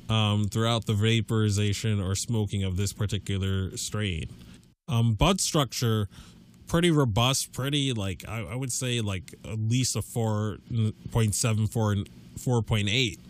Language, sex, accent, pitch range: English, male, American, 100-130 Hz